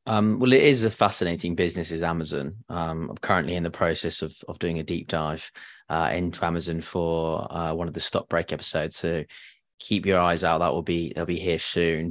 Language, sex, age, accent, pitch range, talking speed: English, male, 20-39, British, 85-95 Hz, 220 wpm